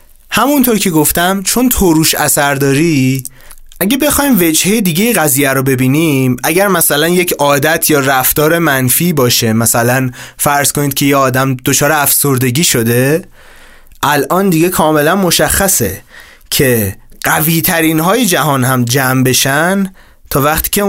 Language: Persian